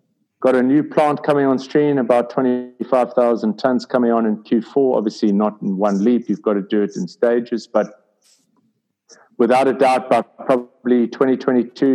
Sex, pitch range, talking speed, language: male, 115-135 Hz, 165 wpm, English